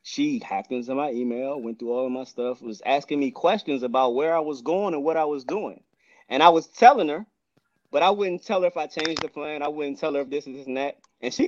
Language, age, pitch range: English, 20-39, 130-205 Hz